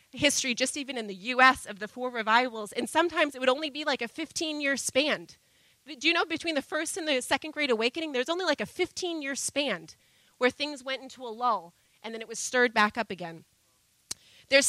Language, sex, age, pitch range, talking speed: English, female, 30-49, 235-310 Hz, 215 wpm